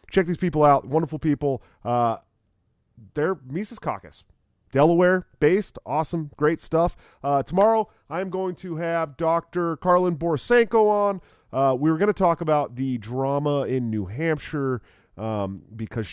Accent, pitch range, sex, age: American, 110-155 Hz, male, 30-49